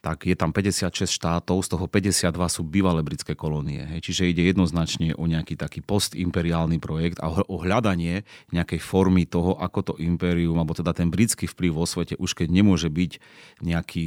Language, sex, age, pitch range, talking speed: Slovak, male, 30-49, 85-90 Hz, 175 wpm